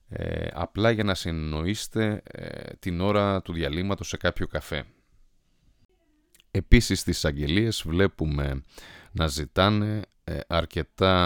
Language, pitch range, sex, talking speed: Greek, 75-100 Hz, male, 105 wpm